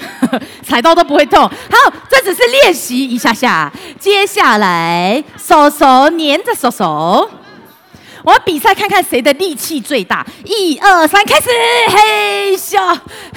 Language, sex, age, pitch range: Chinese, female, 30-49, 245-385 Hz